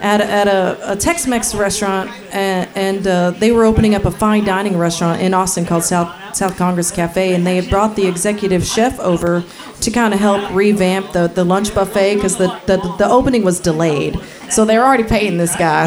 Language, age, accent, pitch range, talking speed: English, 40-59, American, 185-230 Hz, 210 wpm